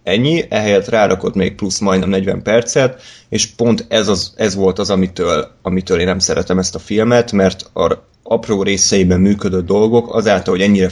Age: 20-39